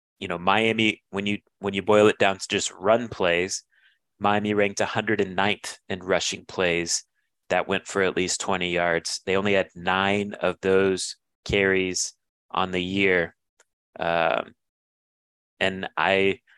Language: English